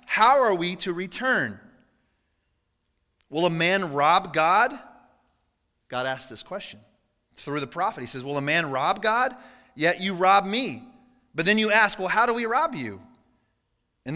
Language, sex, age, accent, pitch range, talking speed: English, male, 30-49, American, 140-190 Hz, 165 wpm